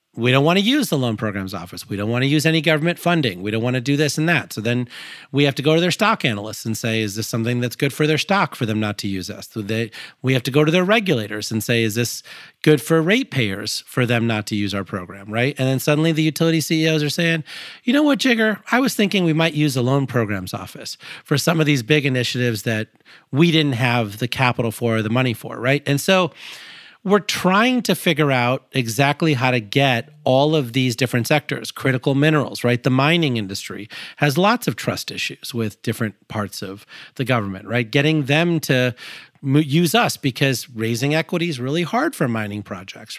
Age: 40-59